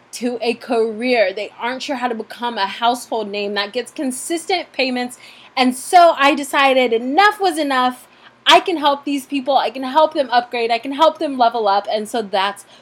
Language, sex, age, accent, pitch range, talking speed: English, female, 20-39, American, 235-315 Hz, 195 wpm